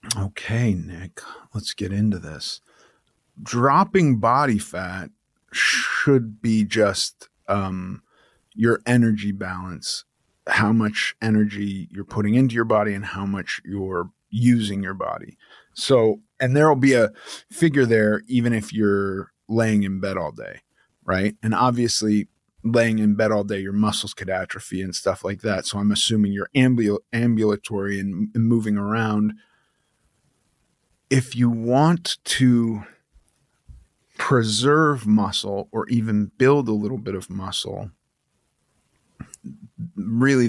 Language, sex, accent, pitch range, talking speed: English, male, American, 100-115 Hz, 125 wpm